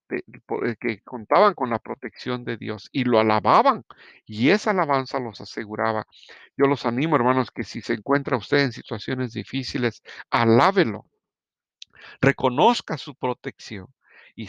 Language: Spanish